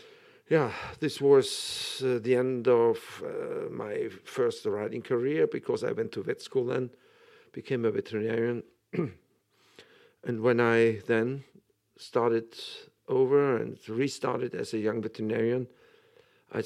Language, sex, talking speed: English, male, 125 wpm